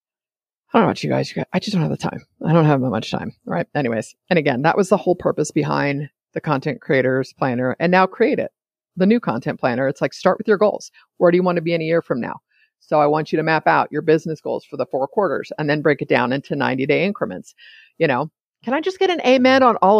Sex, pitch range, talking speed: female, 155-230 Hz, 275 wpm